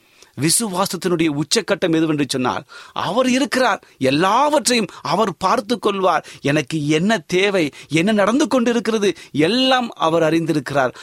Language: Tamil